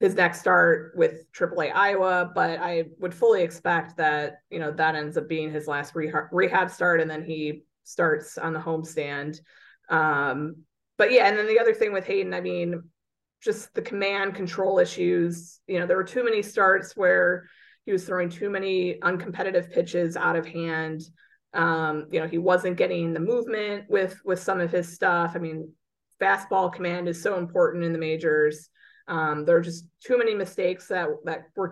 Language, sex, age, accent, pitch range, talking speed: English, female, 20-39, American, 165-195 Hz, 185 wpm